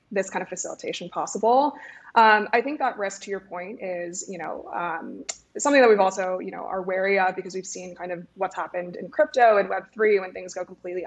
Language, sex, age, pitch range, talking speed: English, female, 20-39, 185-220 Hz, 220 wpm